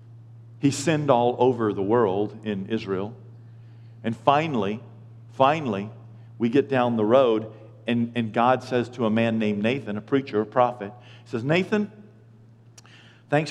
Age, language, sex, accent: 50-69, English, male, American